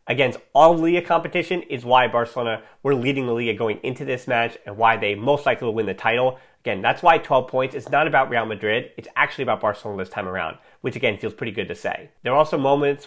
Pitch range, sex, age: 125-165 Hz, male, 30-49